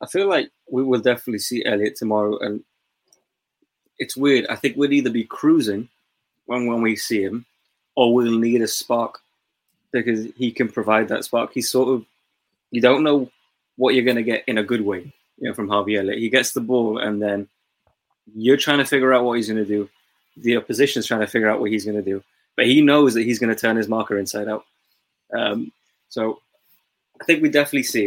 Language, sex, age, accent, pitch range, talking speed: English, male, 20-39, British, 105-125 Hz, 215 wpm